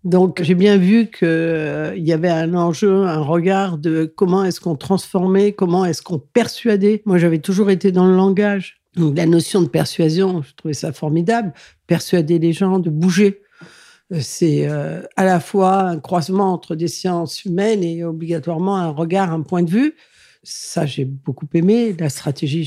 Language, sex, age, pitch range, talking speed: French, female, 60-79, 165-195 Hz, 170 wpm